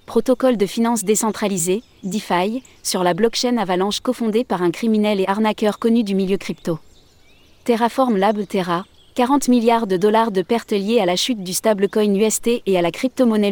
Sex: female